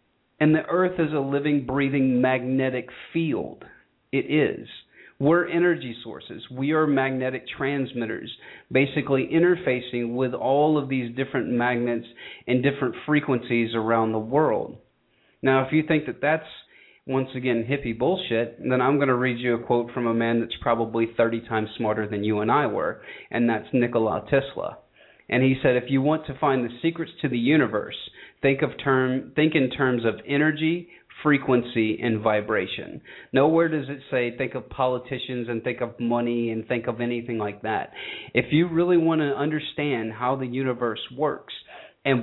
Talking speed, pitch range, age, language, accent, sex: 170 wpm, 120-150 Hz, 40-59, English, American, male